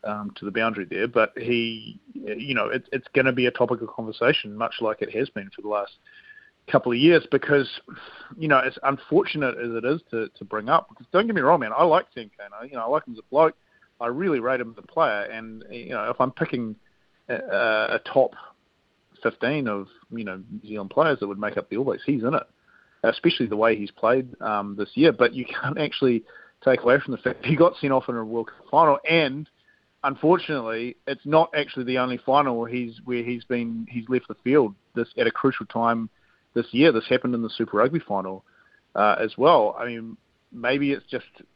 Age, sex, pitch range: 30-49, male, 115-140 Hz